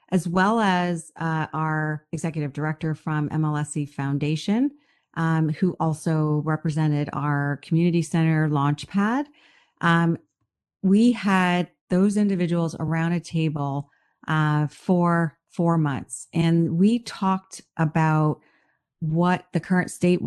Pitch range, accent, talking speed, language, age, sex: 155-185 Hz, American, 115 wpm, English, 40-59, female